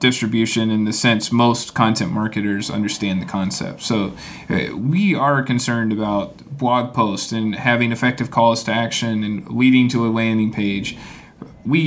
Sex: male